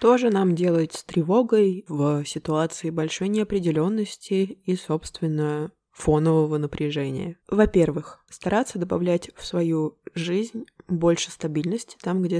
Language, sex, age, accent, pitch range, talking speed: Russian, female, 20-39, native, 150-180 Hz, 115 wpm